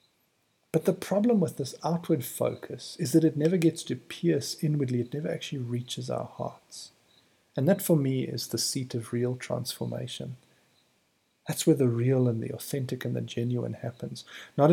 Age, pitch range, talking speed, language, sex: 50-69, 115-145 Hz, 175 wpm, English, male